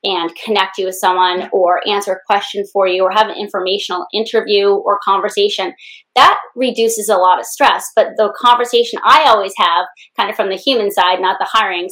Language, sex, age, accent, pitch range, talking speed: English, female, 30-49, American, 195-265 Hz, 195 wpm